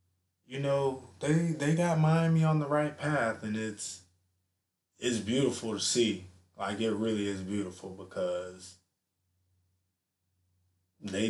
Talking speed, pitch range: 120 wpm, 90-110 Hz